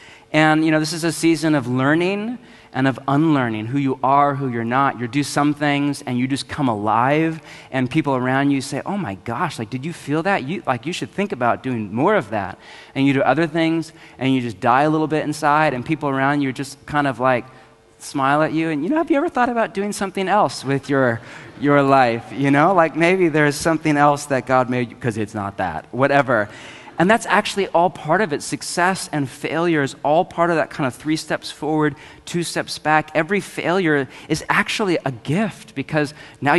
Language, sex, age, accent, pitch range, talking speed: English, male, 30-49, American, 130-160 Hz, 220 wpm